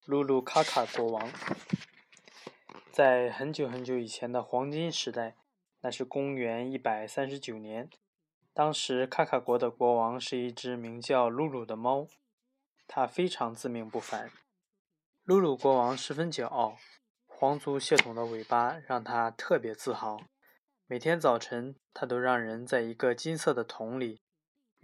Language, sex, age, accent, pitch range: Chinese, male, 20-39, native, 120-150 Hz